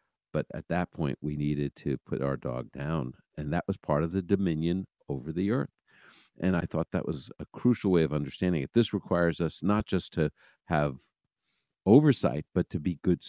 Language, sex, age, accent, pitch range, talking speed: English, male, 50-69, American, 75-100 Hz, 200 wpm